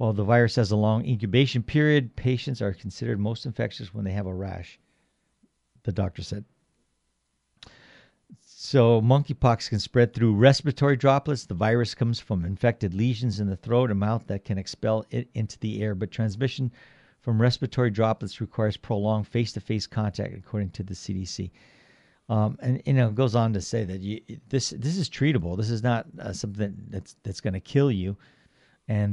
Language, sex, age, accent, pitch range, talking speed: English, male, 50-69, American, 105-125 Hz, 175 wpm